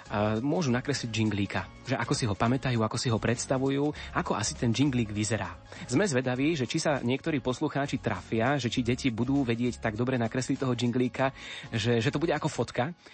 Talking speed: 190 wpm